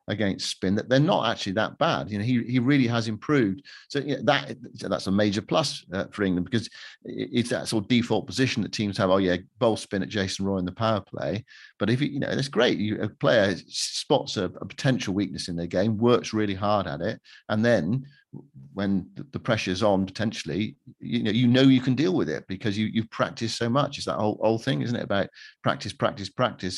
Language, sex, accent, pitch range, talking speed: English, male, British, 100-130 Hz, 230 wpm